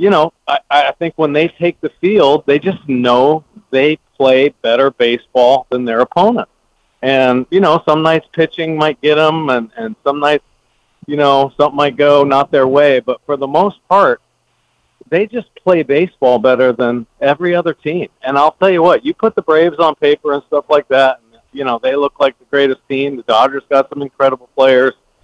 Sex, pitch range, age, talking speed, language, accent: male, 130-170 Hz, 40-59, 200 wpm, English, American